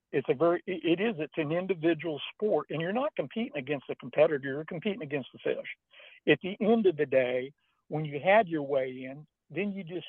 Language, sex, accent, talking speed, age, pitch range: English, male, American, 210 wpm, 60-79, 145-185 Hz